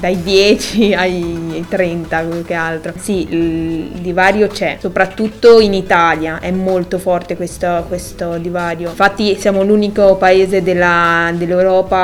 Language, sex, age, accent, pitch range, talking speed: Italian, female, 20-39, native, 175-195 Hz, 125 wpm